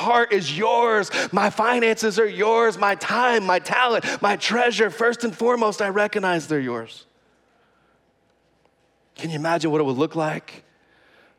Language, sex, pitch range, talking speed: English, male, 140-205 Hz, 150 wpm